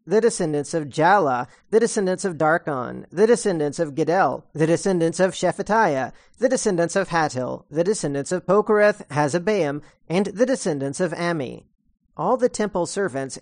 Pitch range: 155-205 Hz